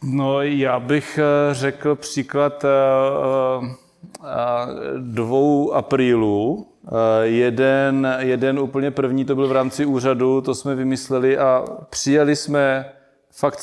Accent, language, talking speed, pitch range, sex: native, Czech, 100 wpm, 125-135 Hz, male